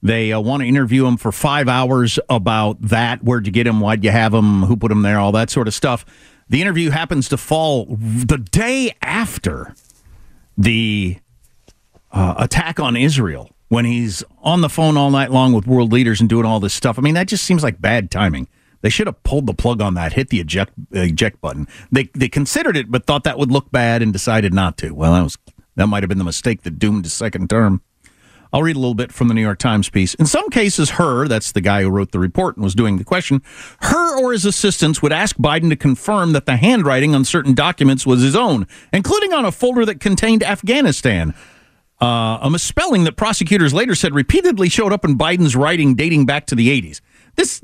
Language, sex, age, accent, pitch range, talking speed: English, male, 50-69, American, 110-170 Hz, 225 wpm